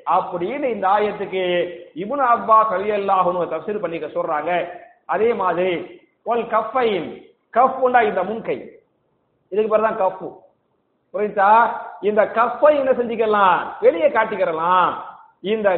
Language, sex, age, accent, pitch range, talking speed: English, male, 50-69, Indian, 190-250 Hz, 105 wpm